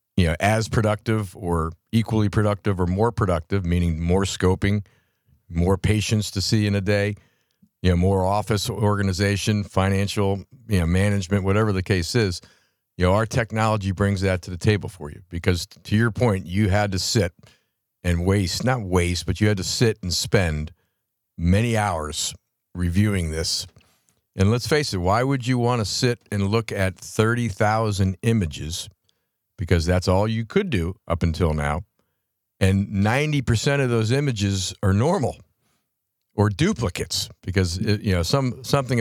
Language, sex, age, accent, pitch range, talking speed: English, male, 50-69, American, 90-110 Hz, 165 wpm